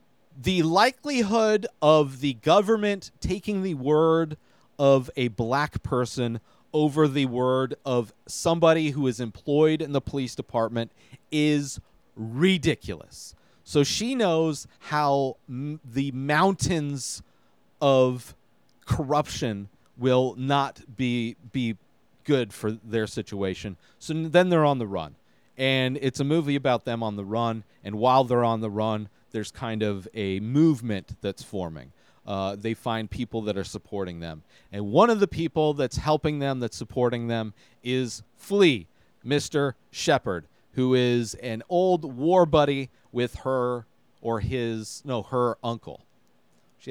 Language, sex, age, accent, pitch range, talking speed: English, male, 40-59, American, 110-150 Hz, 140 wpm